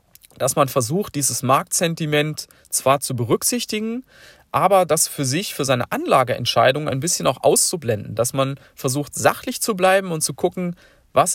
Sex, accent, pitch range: male, German, 130-165 Hz